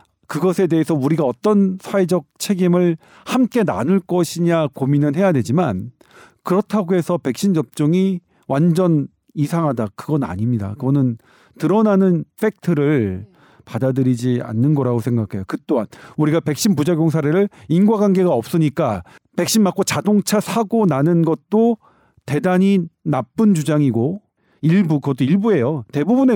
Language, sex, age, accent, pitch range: Korean, male, 40-59, native, 130-190 Hz